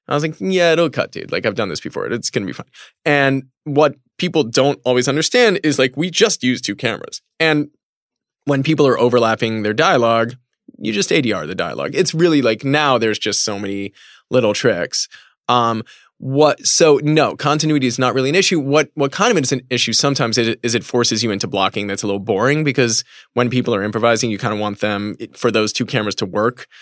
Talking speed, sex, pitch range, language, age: 220 wpm, male, 110-140 Hz, English, 20-39